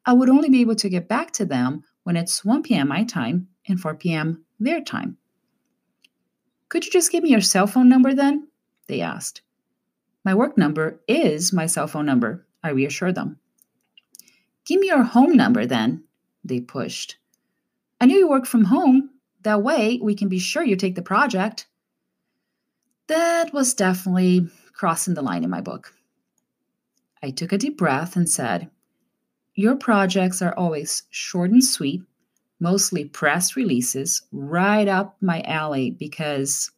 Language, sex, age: English, female, 30-49